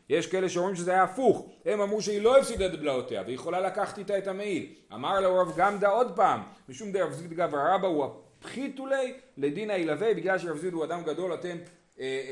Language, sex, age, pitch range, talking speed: Hebrew, male, 30-49, 145-210 Hz, 195 wpm